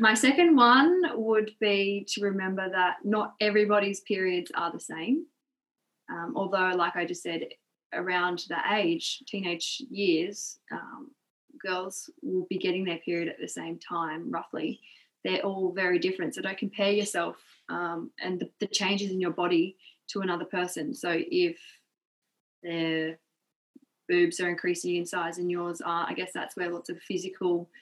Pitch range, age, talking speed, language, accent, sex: 175-240 Hz, 20-39, 160 wpm, English, Australian, female